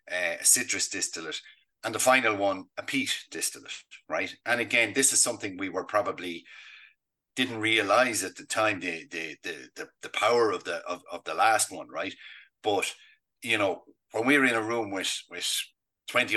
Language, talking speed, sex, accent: English, 180 wpm, male, Irish